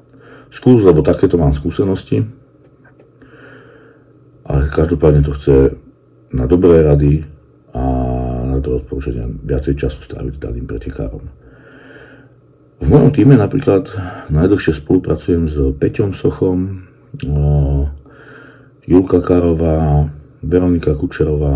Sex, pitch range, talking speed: male, 70-90 Hz, 95 wpm